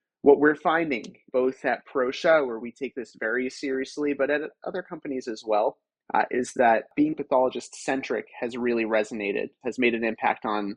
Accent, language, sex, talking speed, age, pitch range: American, English, male, 175 wpm, 30-49, 120-145 Hz